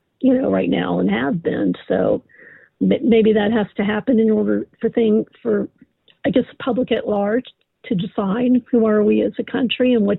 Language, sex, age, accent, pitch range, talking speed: English, female, 50-69, American, 220-265 Hz, 200 wpm